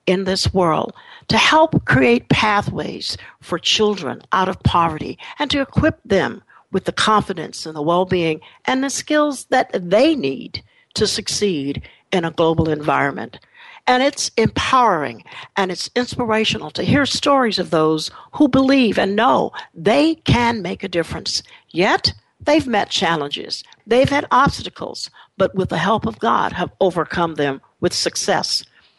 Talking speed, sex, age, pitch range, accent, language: 150 wpm, female, 60-79, 180-275 Hz, American, English